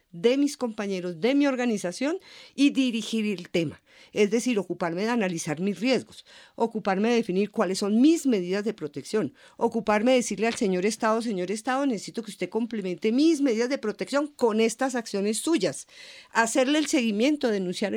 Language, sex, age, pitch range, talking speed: Spanish, female, 50-69, 190-255 Hz, 165 wpm